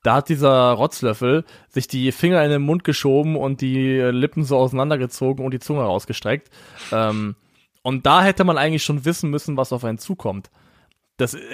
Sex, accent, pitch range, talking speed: male, German, 130-155 Hz, 175 wpm